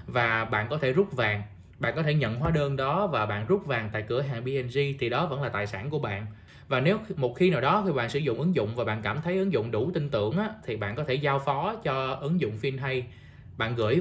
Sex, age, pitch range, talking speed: male, 20-39, 115-170 Hz, 270 wpm